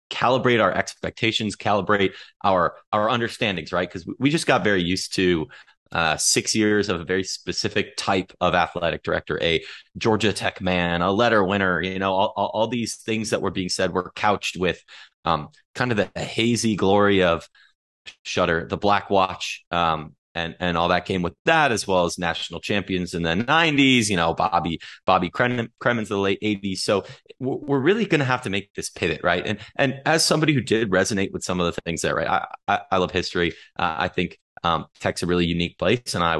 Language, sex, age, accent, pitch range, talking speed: English, male, 30-49, American, 90-110 Hz, 205 wpm